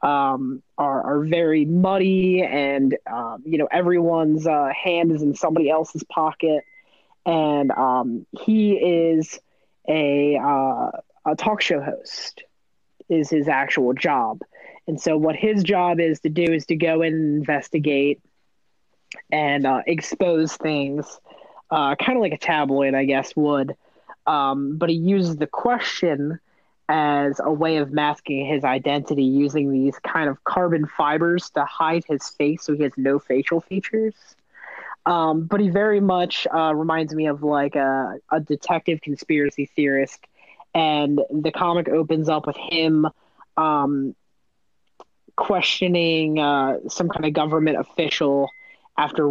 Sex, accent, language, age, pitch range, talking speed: female, American, English, 20-39, 145-165 Hz, 145 wpm